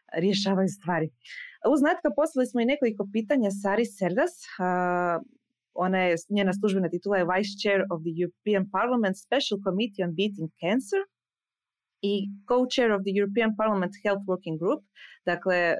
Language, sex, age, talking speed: Croatian, female, 20-39, 145 wpm